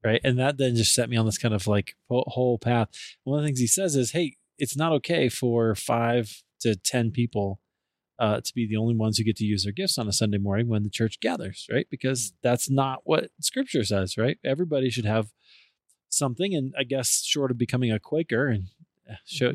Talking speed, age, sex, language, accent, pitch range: 220 wpm, 20-39, male, English, American, 105-130 Hz